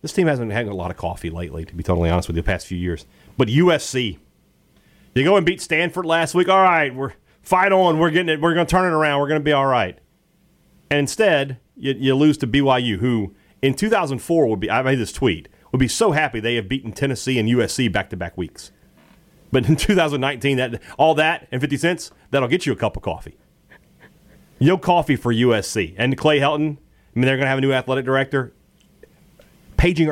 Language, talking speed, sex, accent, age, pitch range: English, 225 wpm, male, American, 40-59, 110-160 Hz